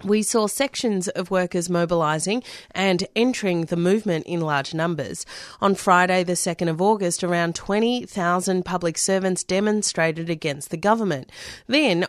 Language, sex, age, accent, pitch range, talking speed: English, female, 30-49, Australian, 165-195 Hz, 140 wpm